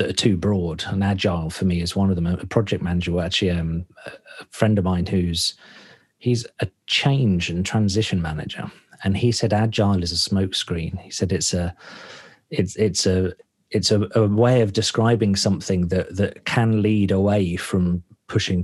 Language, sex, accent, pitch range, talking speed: English, male, British, 90-115 Hz, 180 wpm